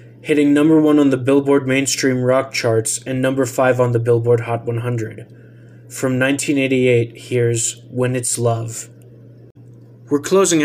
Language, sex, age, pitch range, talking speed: English, male, 20-39, 120-140 Hz, 140 wpm